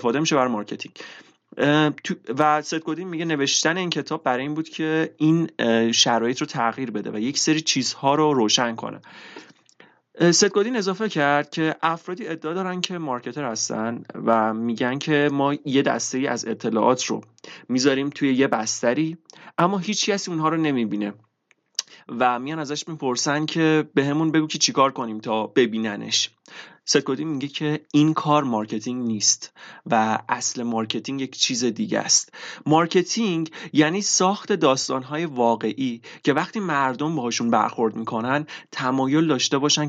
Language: Persian